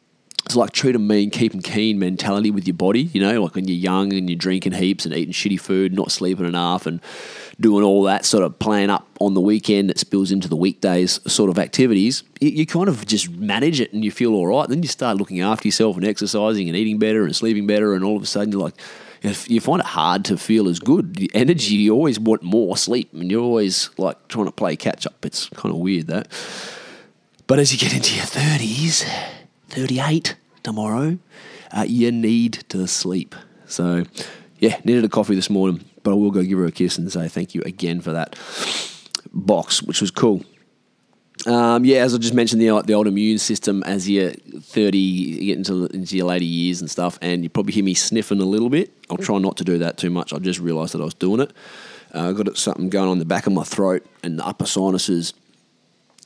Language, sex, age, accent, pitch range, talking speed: English, male, 20-39, Australian, 90-110 Hz, 230 wpm